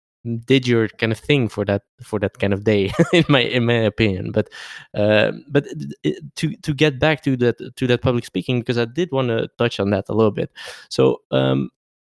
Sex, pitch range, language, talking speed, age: male, 105-135 Hz, English, 215 wpm, 20-39